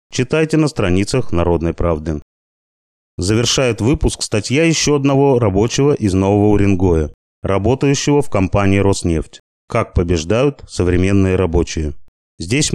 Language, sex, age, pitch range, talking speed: Russian, male, 30-49, 90-130 Hz, 110 wpm